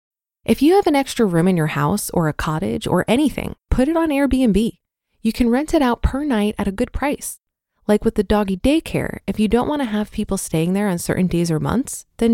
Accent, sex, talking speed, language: American, female, 235 wpm, English